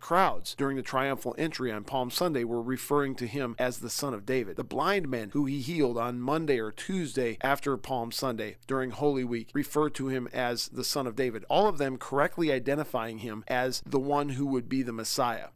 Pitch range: 125-145 Hz